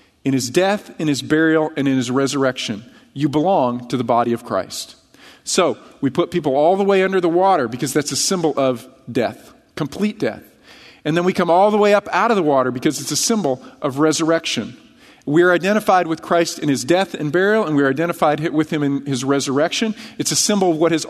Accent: American